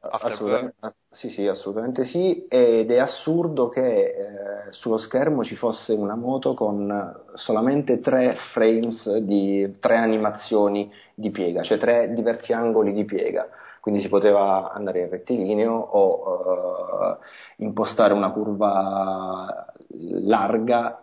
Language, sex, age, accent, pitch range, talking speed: Italian, male, 30-49, native, 100-120 Hz, 125 wpm